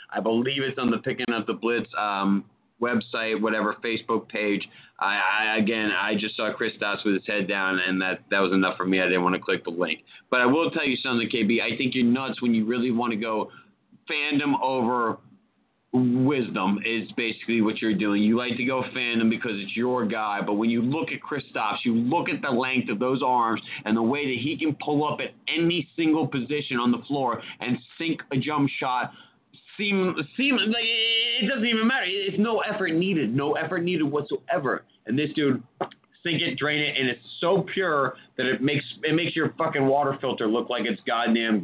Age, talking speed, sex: 30-49, 210 wpm, male